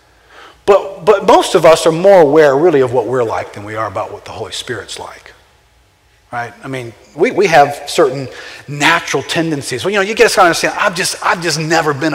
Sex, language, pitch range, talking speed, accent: male, English, 165-240 Hz, 215 wpm, American